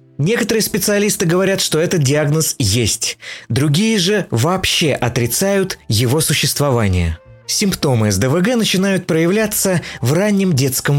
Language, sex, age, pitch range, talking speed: Russian, male, 30-49, 125-180 Hz, 110 wpm